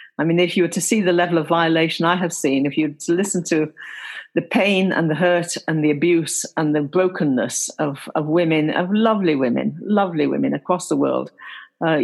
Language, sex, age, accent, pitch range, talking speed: English, female, 50-69, British, 150-195 Hz, 210 wpm